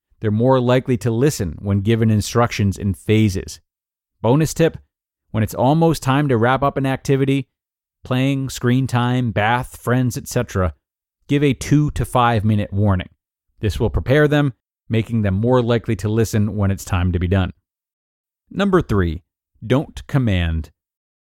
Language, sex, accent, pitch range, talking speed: English, male, American, 100-135 Hz, 155 wpm